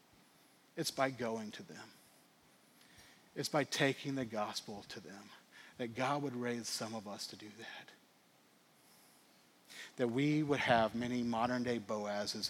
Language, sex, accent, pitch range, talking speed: English, male, American, 115-155 Hz, 145 wpm